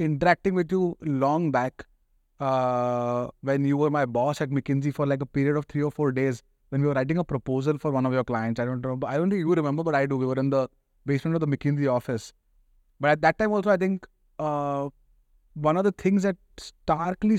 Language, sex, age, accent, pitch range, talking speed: English, male, 20-39, Indian, 125-155 Hz, 230 wpm